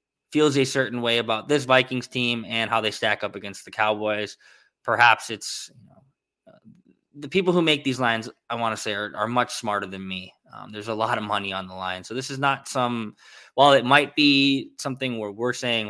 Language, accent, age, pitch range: English, American, 20-39, 105-135 Hz